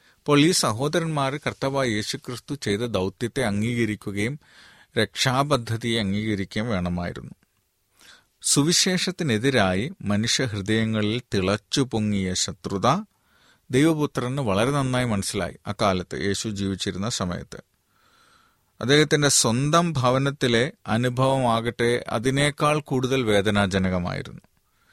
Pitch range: 105-135 Hz